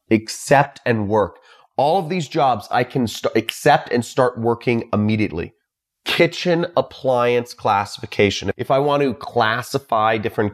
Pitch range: 100-125 Hz